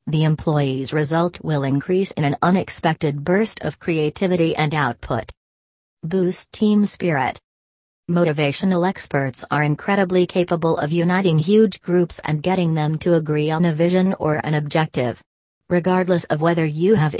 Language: English